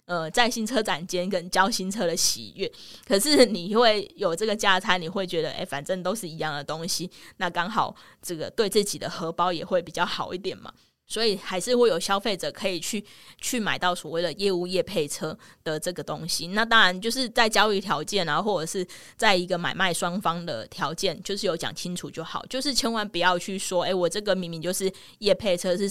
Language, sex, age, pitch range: Chinese, female, 20-39, 170-205 Hz